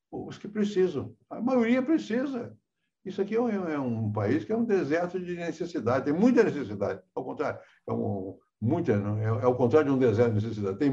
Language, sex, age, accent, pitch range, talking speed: Portuguese, male, 60-79, Brazilian, 115-190 Hz, 190 wpm